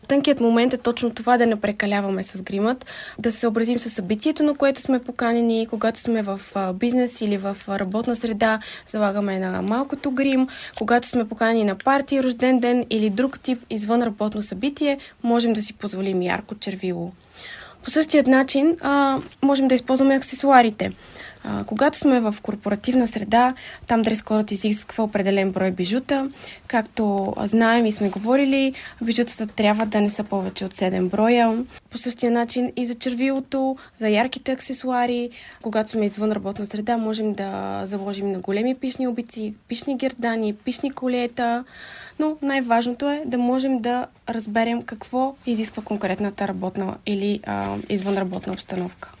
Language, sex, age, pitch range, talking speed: Bulgarian, female, 20-39, 205-255 Hz, 150 wpm